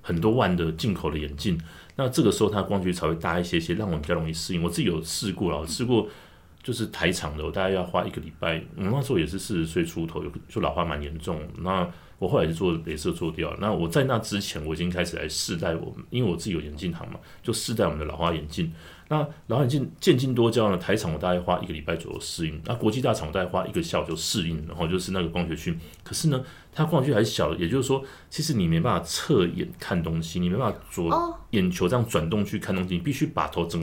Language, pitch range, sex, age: Chinese, 85-130 Hz, male, 30-49